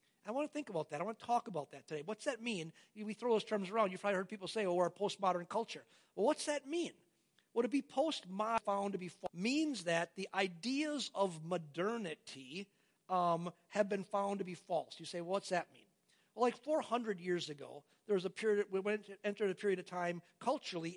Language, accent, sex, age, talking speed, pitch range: English, American, male, 50-69, 230 wpm, 175-220 Hz